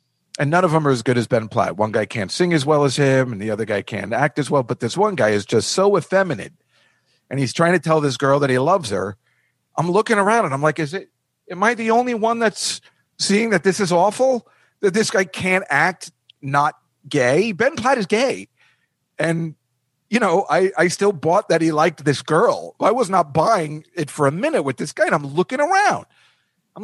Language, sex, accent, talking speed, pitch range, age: English, male, American, 230 wpm, 140-210 Hz, 40-59